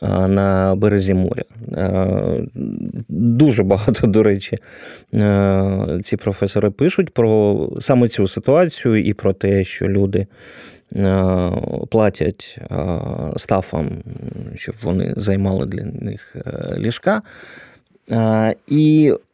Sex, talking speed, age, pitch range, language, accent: male, 85 wpm, 20-39, 100-135 Hz, Ukrainian, native